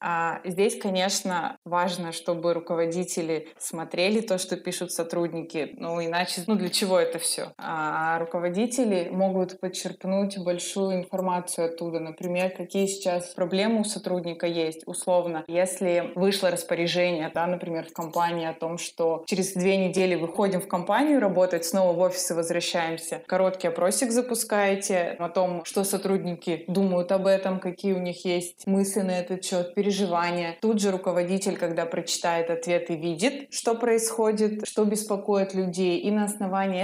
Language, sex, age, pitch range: Russian, female, 20-39, 175-195 Hz